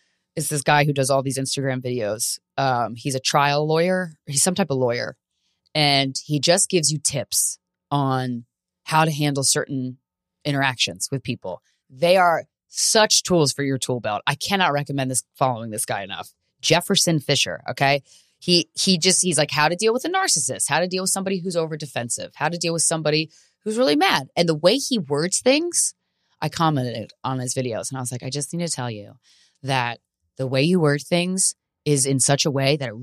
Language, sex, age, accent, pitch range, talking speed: English, female, 20-39, American, 125-160 Hz, 205 wpm